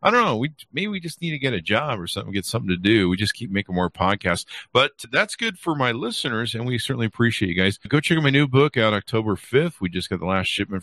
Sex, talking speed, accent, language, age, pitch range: male, 285 wpm, American, English, 50-69, 95-150 Hz